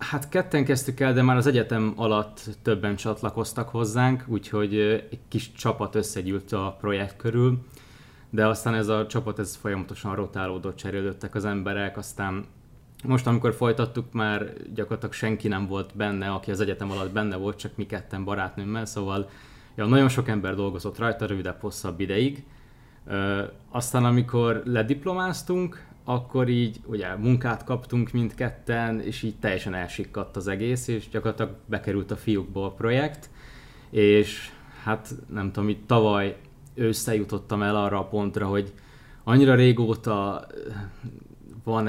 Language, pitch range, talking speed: Hungarian, 100-120 Hz, 140 wpm